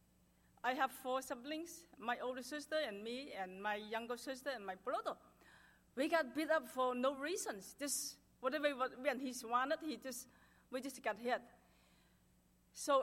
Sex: female